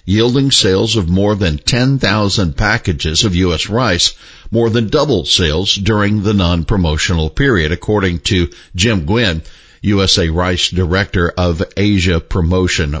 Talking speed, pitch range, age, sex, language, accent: 130 wpm, 90-115 Hz, 60-79, male, English, American